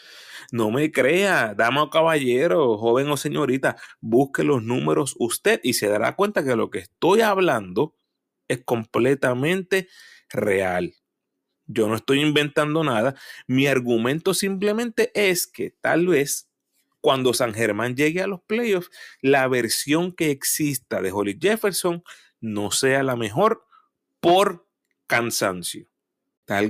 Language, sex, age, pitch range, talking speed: Spanish, male, 30-49, 115-170 Hz, 130 wpm